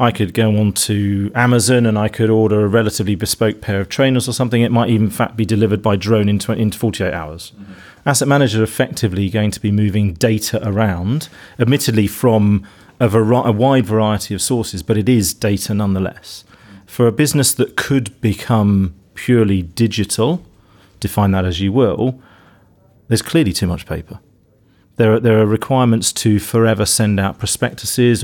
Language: English